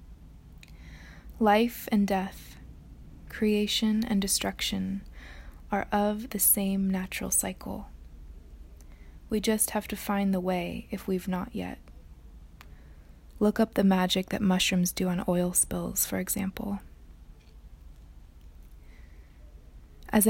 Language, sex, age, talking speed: English, female, 20-39, 105 wpm